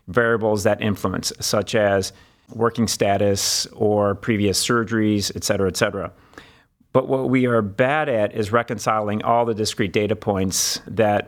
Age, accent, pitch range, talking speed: 40-59, American, 105-120 Hz, 150 wpm